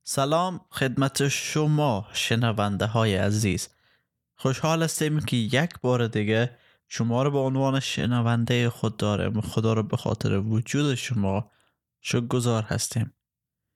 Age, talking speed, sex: 20-39, 120 wpm, male